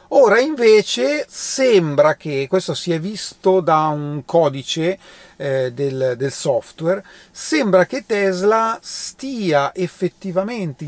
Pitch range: 140-190 Hz